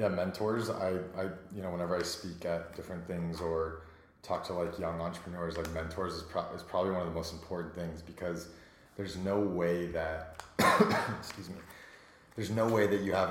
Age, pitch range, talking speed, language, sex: 30-49, 85-100 Hz, 195 wpm, English, male